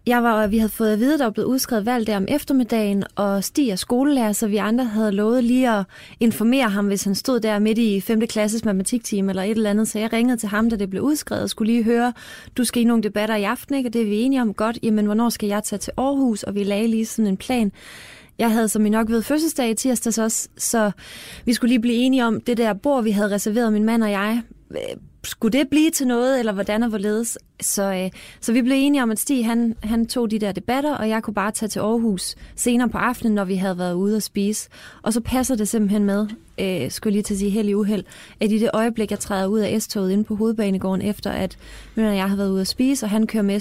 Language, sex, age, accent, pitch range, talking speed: Danish, female, 20-39, native, 200-235 Hz, 255 wpm